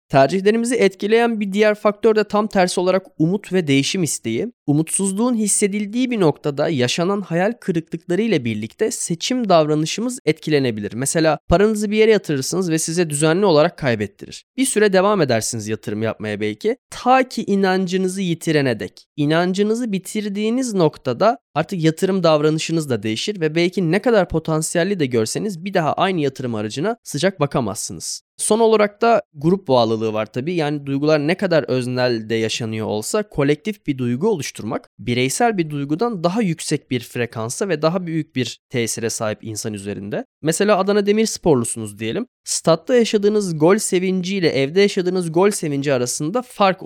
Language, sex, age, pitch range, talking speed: Turkish, male, 20-39, 145-205 Hz, 150 wpm